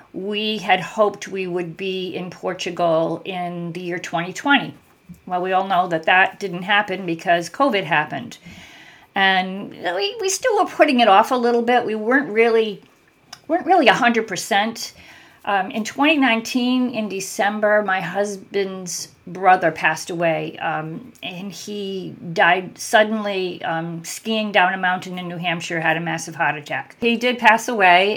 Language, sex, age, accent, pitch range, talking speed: English, female, 50-69, American, 170-215 Hz, 155 wpm